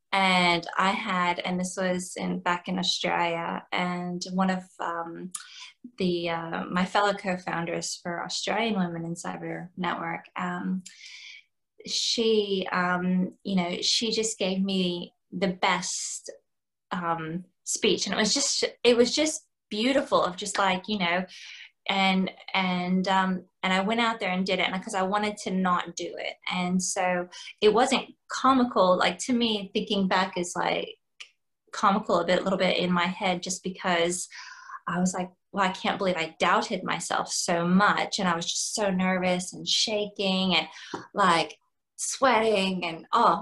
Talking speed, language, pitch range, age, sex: 160 wpm, English, 180-205 Hz, 20-39, female